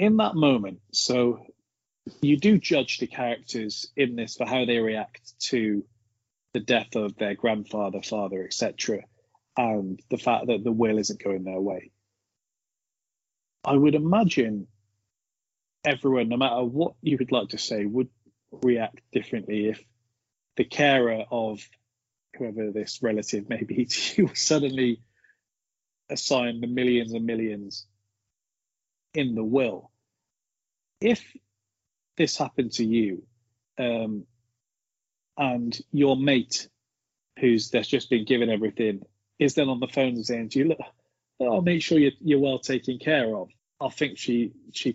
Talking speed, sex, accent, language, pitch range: 145 wpm, male, British, English, 105-130 Hz